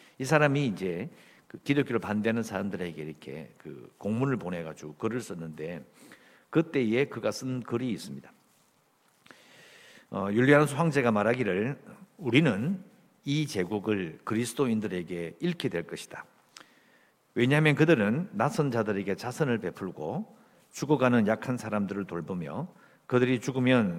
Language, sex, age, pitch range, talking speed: English, male, 50-69, 105-160 Hz, 100 wpm